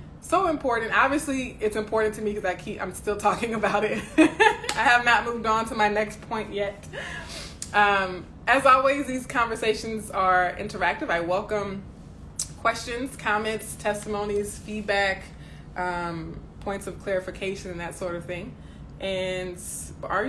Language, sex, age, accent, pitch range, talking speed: English, female, 20-39, American, 175-220 Hz, 145 wpm